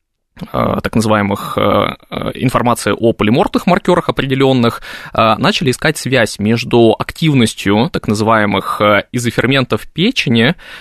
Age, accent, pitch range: 20-39, native, 105-135 Hz